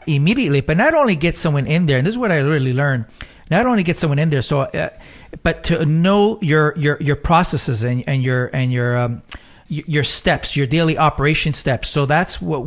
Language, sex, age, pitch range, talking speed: English, male, 40-59, 130-160 Hz, 215 wpm